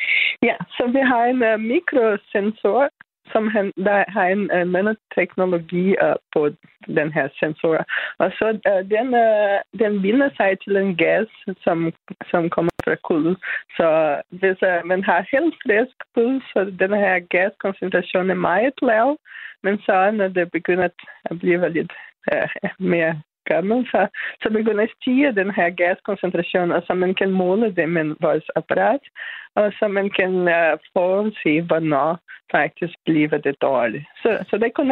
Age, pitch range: 20-39, 180-225 Hz